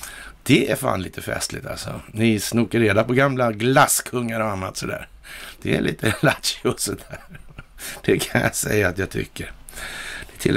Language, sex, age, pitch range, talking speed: Swedish, male, 60-79, 110-140 Hz, 165 wpm